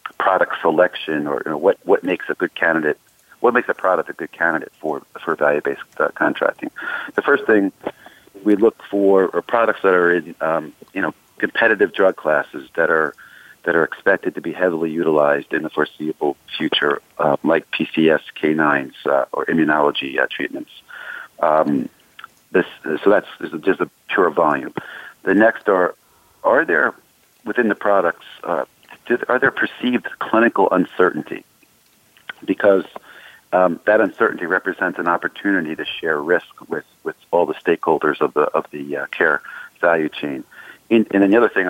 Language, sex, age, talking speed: English, male, 50-69, 165 wpm